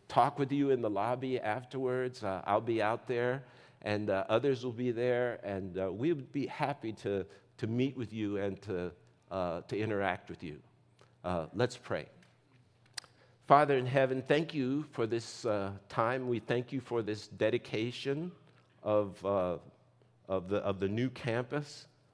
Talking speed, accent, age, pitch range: 165 wpm, American, 50-69, 100-130 Hz